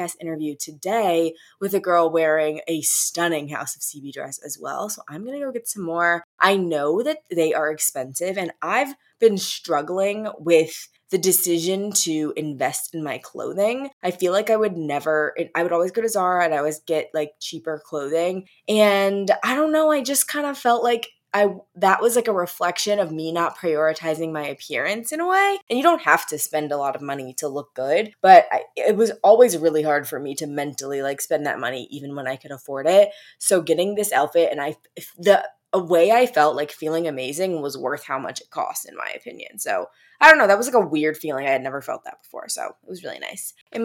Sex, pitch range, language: female, 155-210 Hz, English